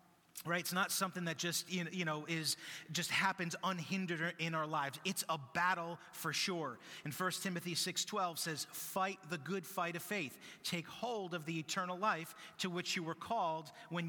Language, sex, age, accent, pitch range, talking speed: English, male, 30-49, American, 165-215 Hz, 185 wpm